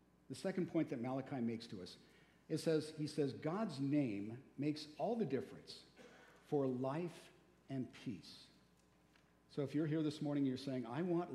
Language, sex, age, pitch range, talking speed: English, male, 50-69, 125-165 Hz, 175 wpm